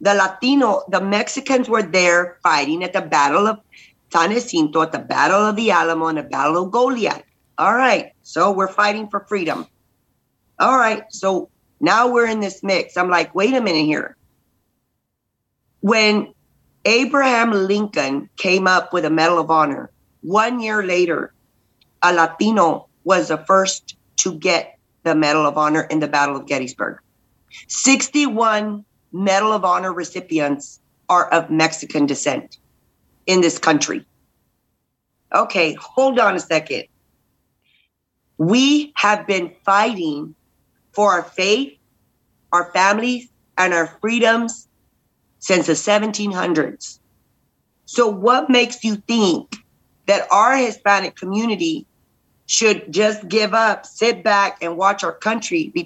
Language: English